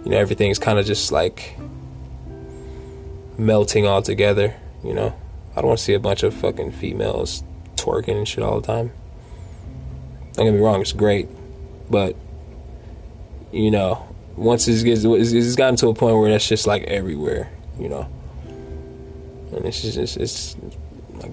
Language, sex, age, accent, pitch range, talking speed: English, male, 20-39, American, 80-115 Hz, 165 wpm